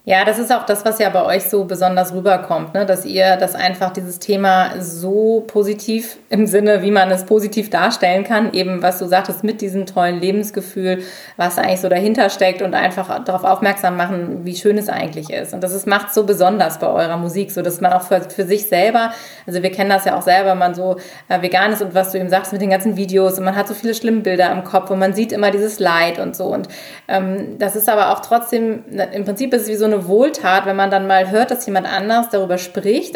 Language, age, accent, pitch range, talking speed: German, 20-39, German, 185-210 Hz, 240 wpm